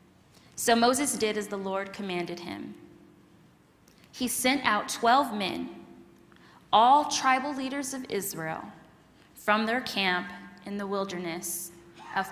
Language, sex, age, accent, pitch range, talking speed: English, female, 20-39, American, 195-255 Hz, 120 wpm